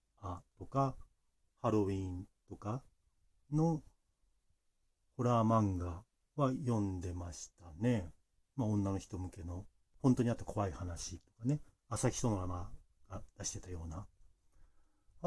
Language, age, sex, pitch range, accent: Japanese, 40-59, male, 90-130 Hz, native